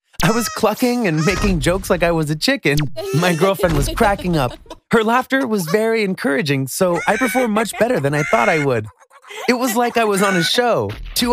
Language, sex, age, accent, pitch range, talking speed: English, male, 20-39, American, 150-230 Hz, 210 wpm